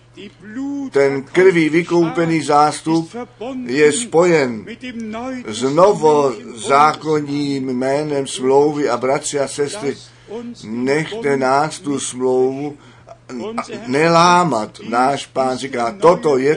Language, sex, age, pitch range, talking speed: Czech, male, 60-79, 135-175 Hz, 90 wpm